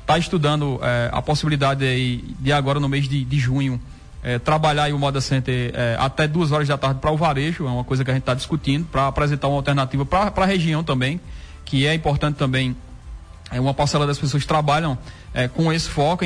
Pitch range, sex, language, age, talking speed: 135-175 Hz, male, Portuguese, 20-39, 205 wpm